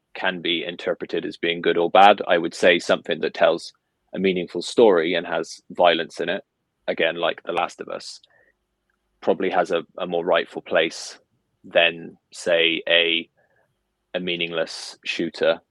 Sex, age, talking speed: male, 20-39, 155 wpm